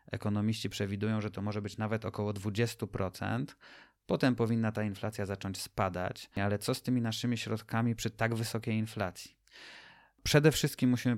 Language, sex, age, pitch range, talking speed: Polish, male, 30-49, 100-115 Hz, 150 wpm